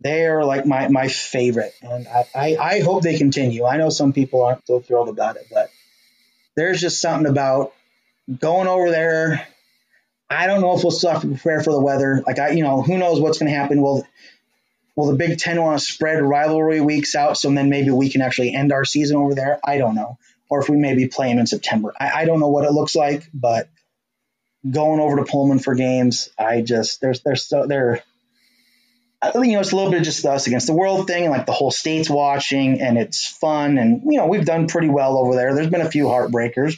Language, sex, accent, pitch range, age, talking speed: English, male, American, 130-165 Hz, 20-39, 240 wpm